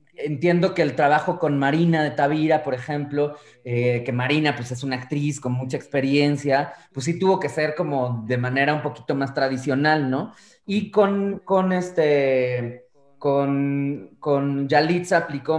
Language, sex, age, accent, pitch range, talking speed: Spanish, male, 20-39, Mexican, 125-155 Hz, 160 wpm